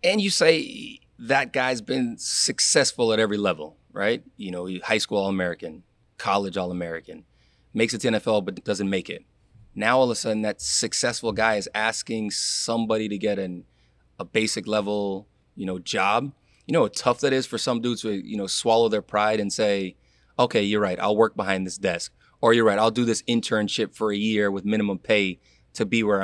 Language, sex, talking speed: English, male, 200 wpm